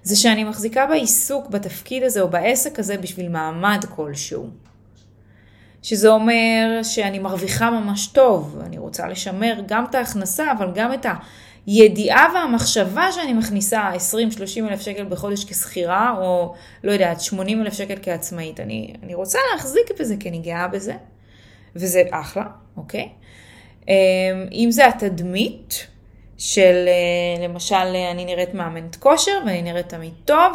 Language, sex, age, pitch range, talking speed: Hebrew, female, 20-39, 180-240 Hz, 135 wpm